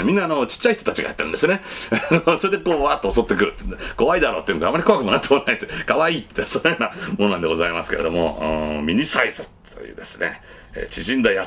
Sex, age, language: male, 40-59, Japanese